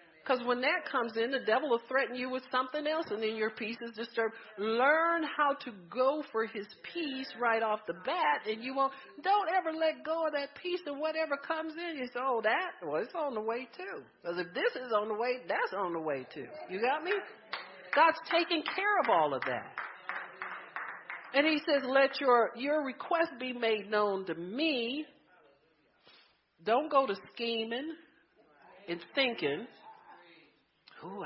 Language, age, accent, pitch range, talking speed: English, 50-69, American, 180-280 Hz, 180 wpm